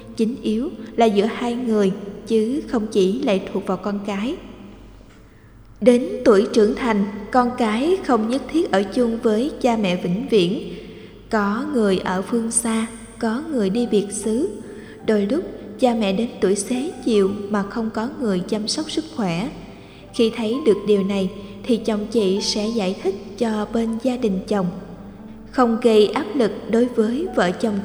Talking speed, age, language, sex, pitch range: 170 wpm, 20-39, Vietnamese, female, 205-240 Hz